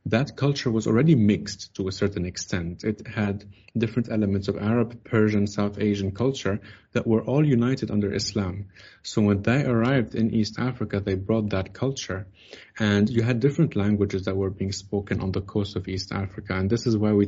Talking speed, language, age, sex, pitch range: 195 wpm, English, 30-49, male, 100-115 Hz